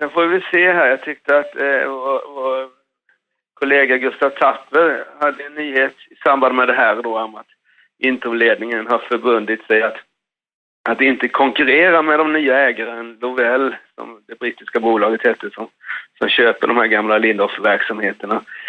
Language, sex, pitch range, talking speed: Swedish, male, 115-145 Hz, 160 wpm